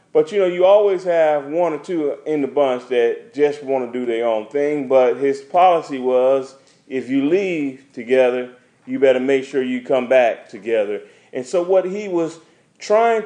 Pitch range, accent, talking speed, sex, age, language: 130-185 Hz, American, 190 wpm, male, 30-49, English